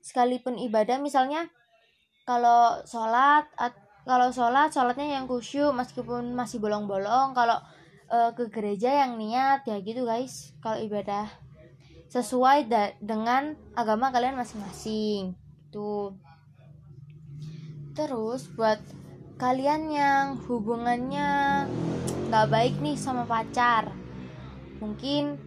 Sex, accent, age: female, native, 20-39